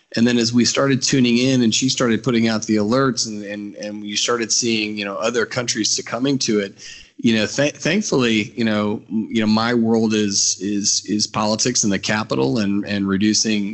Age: 30-49